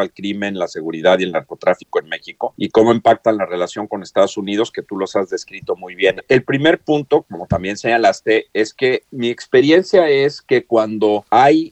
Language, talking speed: Spanish, 195 wpm